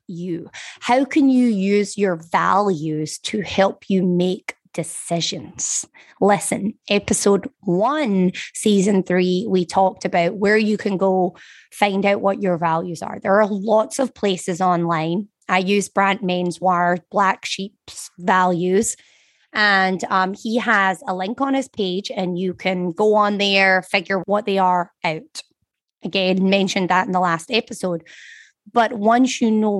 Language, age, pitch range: English, 20-39, 185-225 Hz